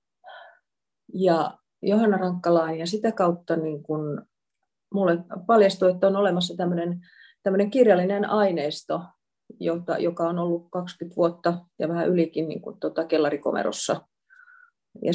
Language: Finnish